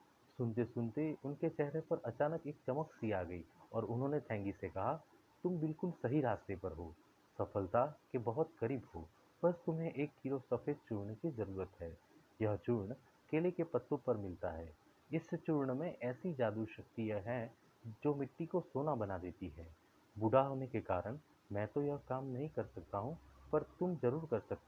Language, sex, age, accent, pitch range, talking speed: English, male, 30-49, Indian, 105-145 Hz, 145 wpm